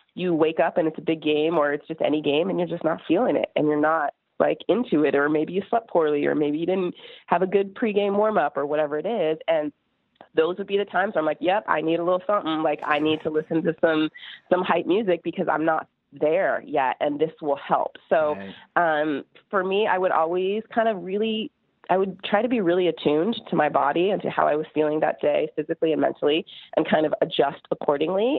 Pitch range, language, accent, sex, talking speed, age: 155-195 Hz, English, American, female, 240 wpm, 30-49